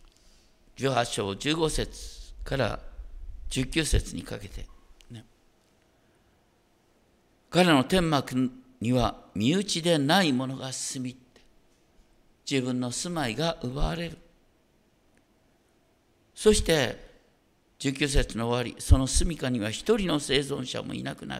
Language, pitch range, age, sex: Japanese, 105-150 Hz, 50-69, male